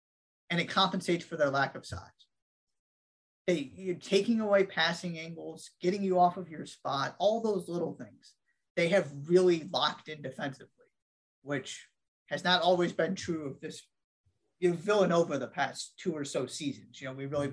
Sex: male